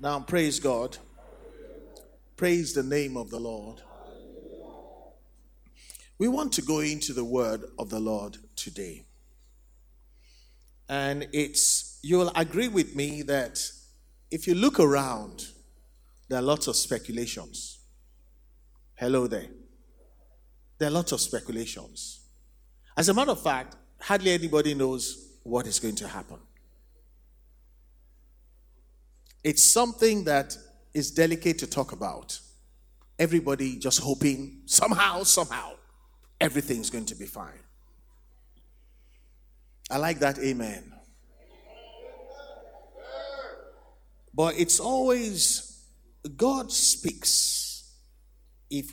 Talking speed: 105 wpm